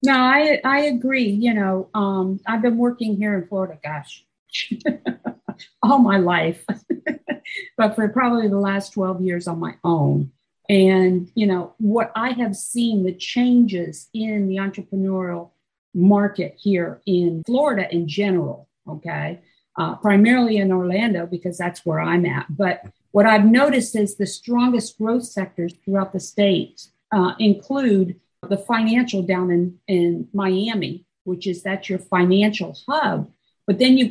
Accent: American